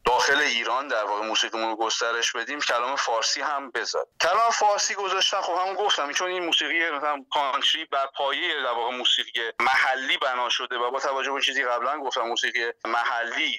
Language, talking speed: Persian, 170 wpm